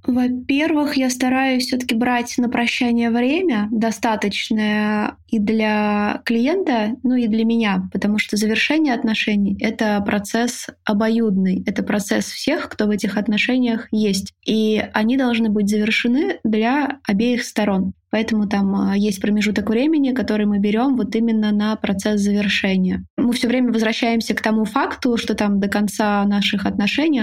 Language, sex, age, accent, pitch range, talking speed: Russian, female, 20-39, native, 210-240 Hz, 145 wpm